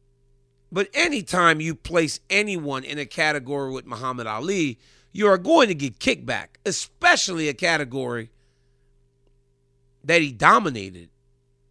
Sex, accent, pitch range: male, American, 130-175 Hz